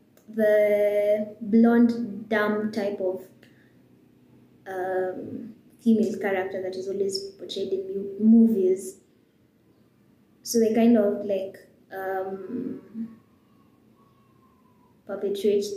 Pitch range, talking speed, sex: 195-230 Hz, 80 wpm, female